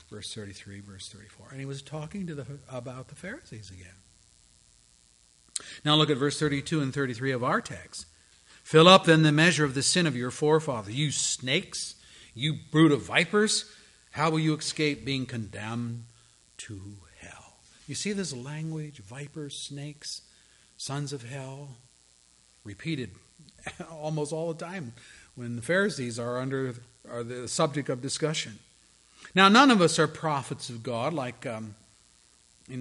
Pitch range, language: 115-160 Hz, English